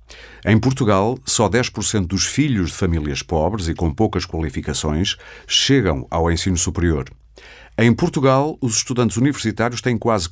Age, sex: 50-69, male